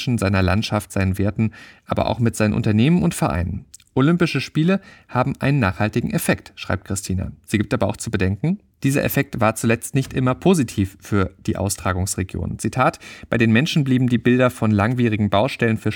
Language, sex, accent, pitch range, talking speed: German, male, German, 105-130 Hz, 175 wpm